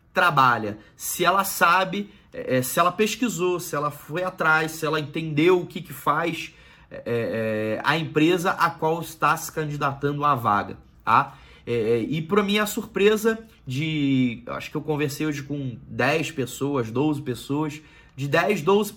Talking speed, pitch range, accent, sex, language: 165 wpm, 140-180 Hz, Brazilian, male, Portuguese